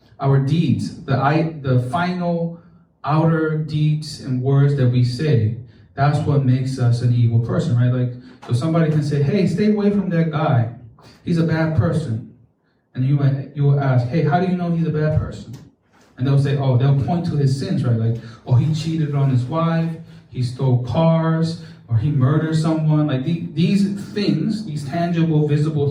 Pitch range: 125-160 Hz